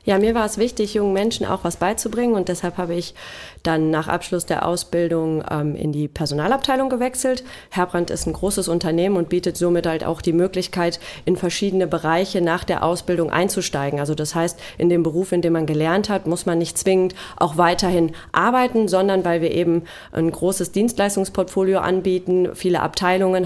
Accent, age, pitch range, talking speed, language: German, 30-49, 170-200 Hz, 180 wpm, German